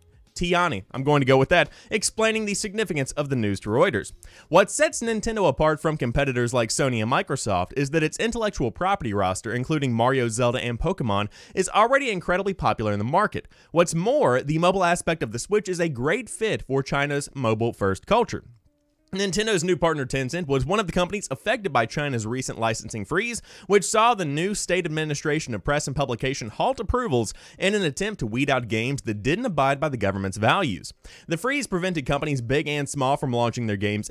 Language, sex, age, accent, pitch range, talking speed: English, male, 20-39, American, 120-185 Hz, 195 wpm